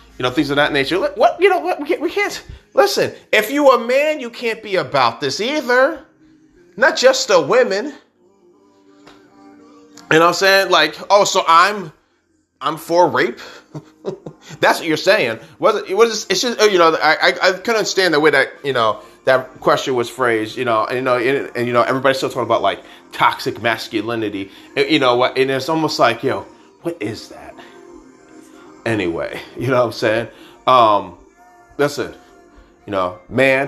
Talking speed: 185 wpm